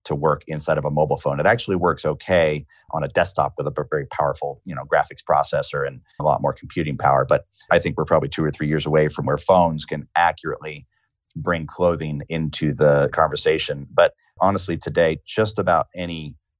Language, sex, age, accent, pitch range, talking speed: English, male, 30-49, American, 75-90 Hz, 195 wpm